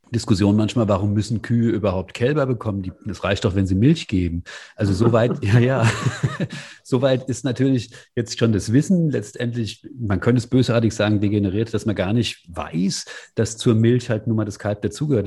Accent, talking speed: German, 190 wpm